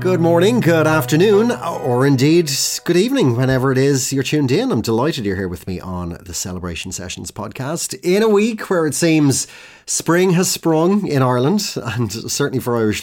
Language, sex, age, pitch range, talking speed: English, male, 30-49, 95-155 Hz, 185 wpm